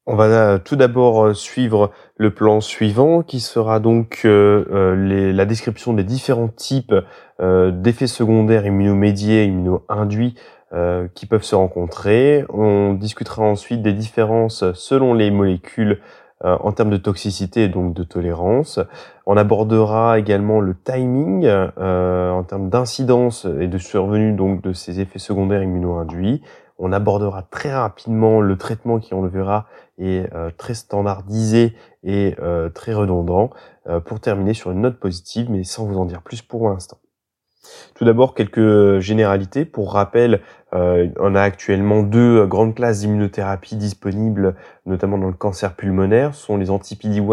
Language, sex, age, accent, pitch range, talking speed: French, male, 20-39, French, 95-110 Hz, 150 wpm